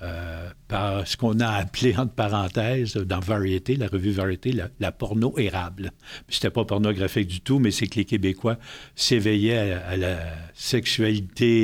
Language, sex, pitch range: French, male, 100-125 Hz